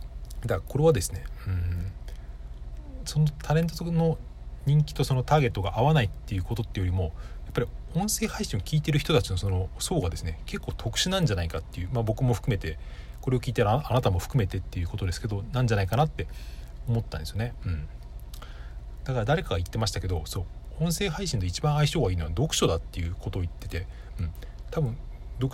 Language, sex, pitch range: Japanese, male, 90-130 Hz